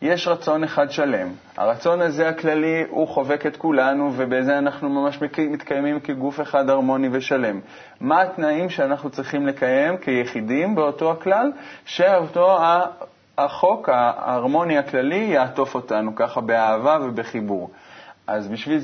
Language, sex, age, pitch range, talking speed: Hebrew, male, 20-39, 130-170 Hz, 120 wpm